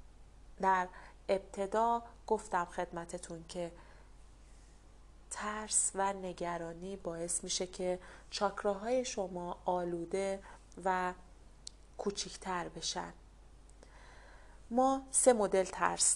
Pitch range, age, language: 180-215 Hz, 30-49, Persian